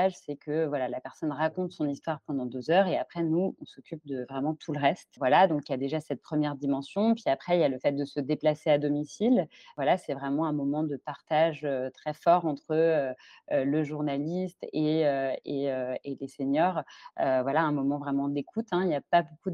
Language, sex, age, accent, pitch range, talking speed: French, female, 30-49, French, 145-170 Hz, 225 wpm